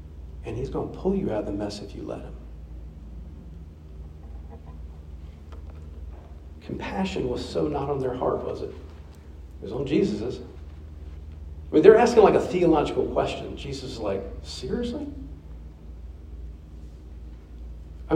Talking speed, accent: 130 wpm, American